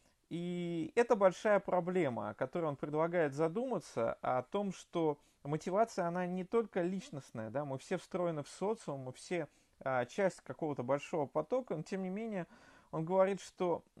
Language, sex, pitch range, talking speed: Russian, male, 150-190 Hz, 155 wpm